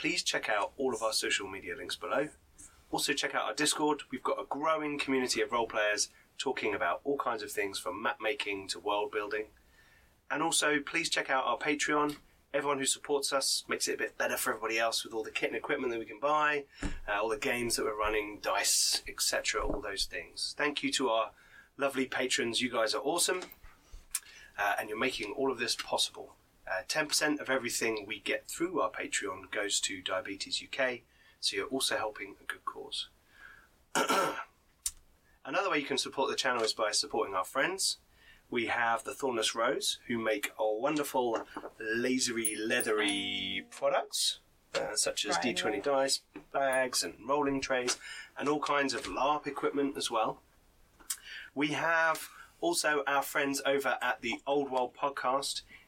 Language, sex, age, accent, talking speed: English, male, 30-49, British, 180 wpm